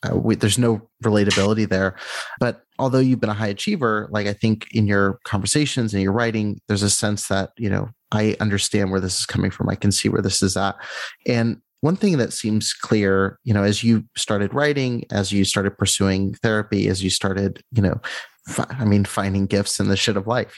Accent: American